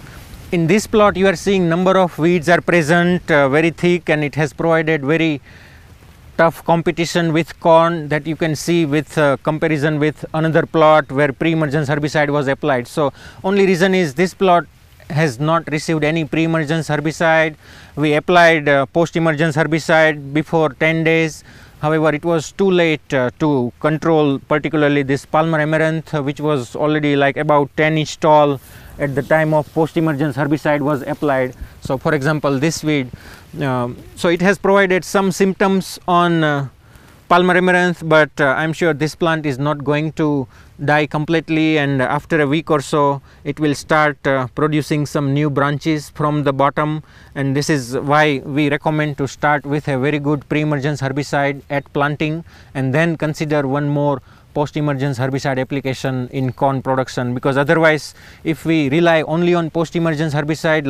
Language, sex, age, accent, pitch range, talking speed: English, male, 30-49, Indian, 140-160 Hz, 165 wpm